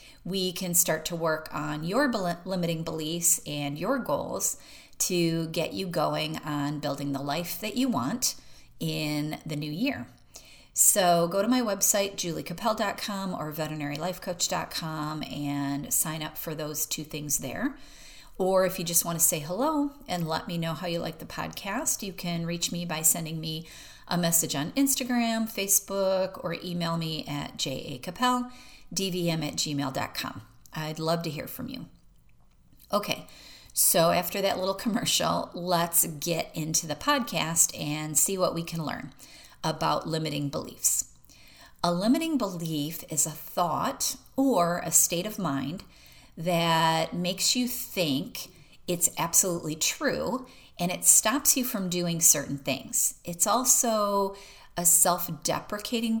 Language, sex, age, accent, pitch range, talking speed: English, female, 30-49, American, 155-195 Hz, 145 wpm